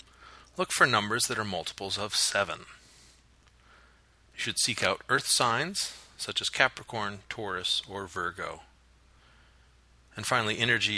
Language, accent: English, American